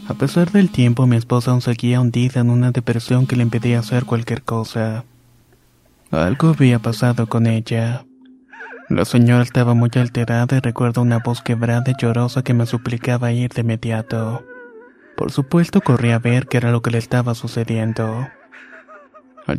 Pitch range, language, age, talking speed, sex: 120-130 Hz, Spanish, 20-39, 165 wpm, male